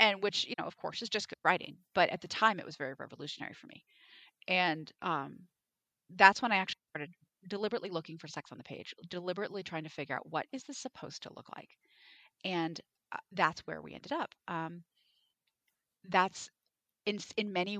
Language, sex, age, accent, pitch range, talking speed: English, female, 30-49, American, 180-275 Hz, 195 wpm